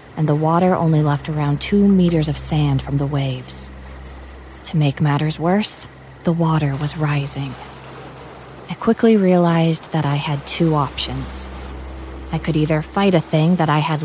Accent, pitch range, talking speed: American, 130-165 Hz, 160 wpm